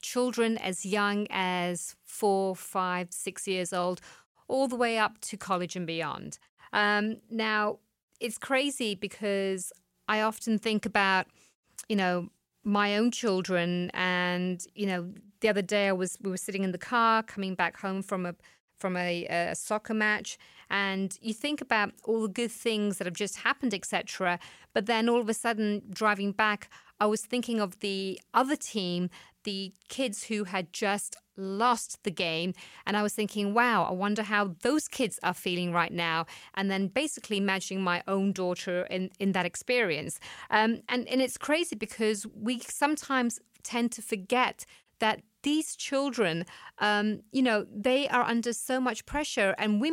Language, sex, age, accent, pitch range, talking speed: English, female, 40-59, British, 190-230 Hz, 170 wpm